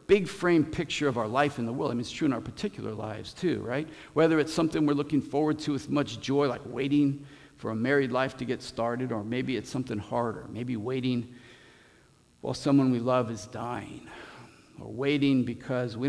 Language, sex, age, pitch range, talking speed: English, male, 50-69, 115-145 Hz, 205 wpm